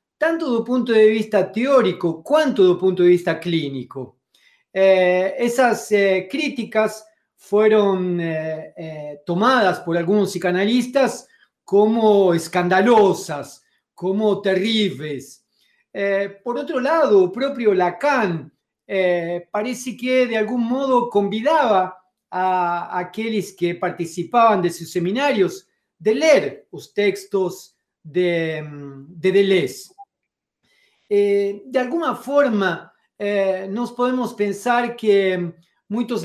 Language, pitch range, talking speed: Portuguese, 180-230 Hz, 105 wpm